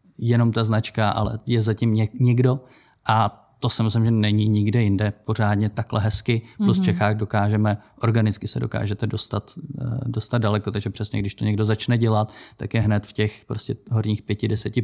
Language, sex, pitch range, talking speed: Czech, male, 105-120 Hz, 175 wpm